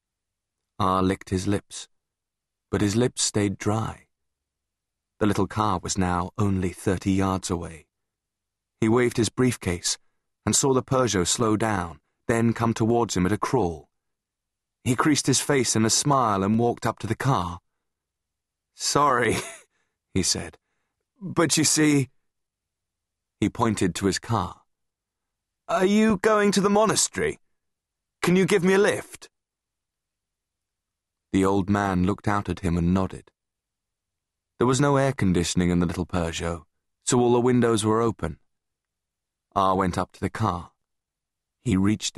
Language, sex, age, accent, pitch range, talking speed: English, male, 30-49, British, 90-115 Hz, 145 wpm